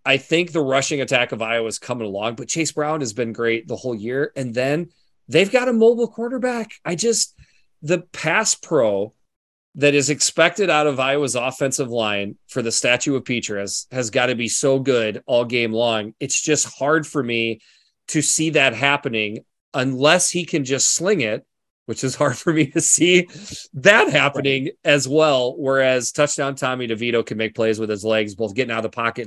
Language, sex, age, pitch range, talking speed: English, male, 30-49, 115-150 Hz, 195 wpm